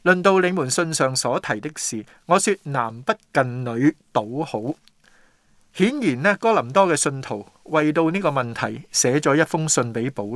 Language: Chinese